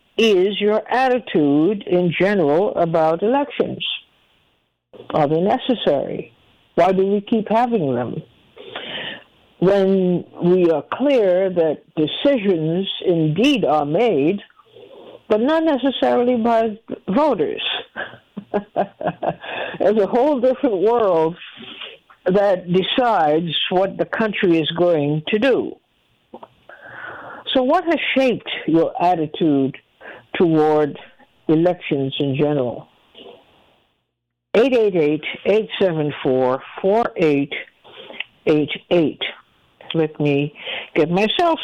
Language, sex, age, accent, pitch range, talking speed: English, female, 60-79, American, 165-240 Hz, 85 wpm